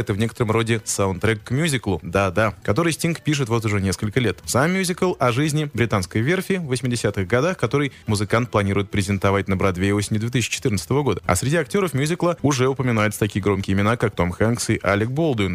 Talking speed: 185 wpm